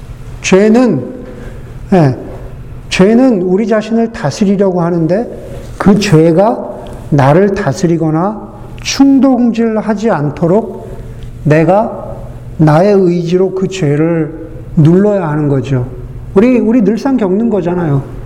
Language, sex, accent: Korean, male, native